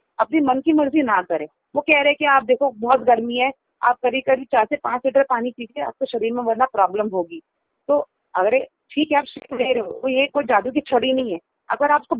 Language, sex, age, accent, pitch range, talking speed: Hindi, female, 30-49, native, 230-295 Hz, 235 wpm